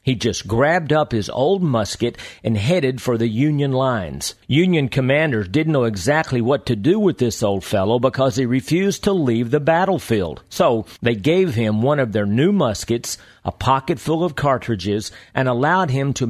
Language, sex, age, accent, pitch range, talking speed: English, male, 50-69, American, 115-160 Hz, 185 wpm